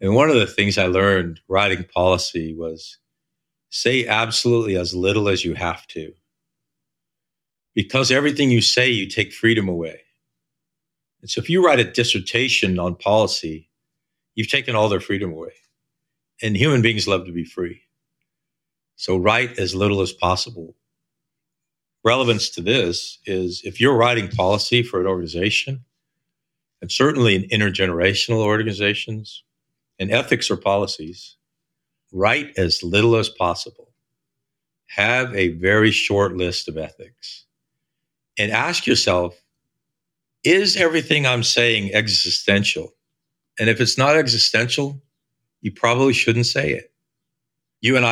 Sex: male